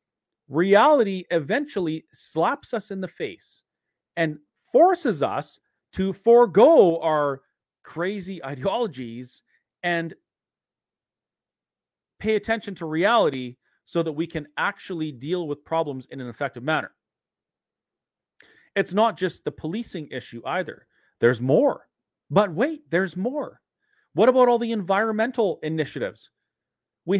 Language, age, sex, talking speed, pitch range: English, 40-59, male, 115 wpm, 155-215 Hz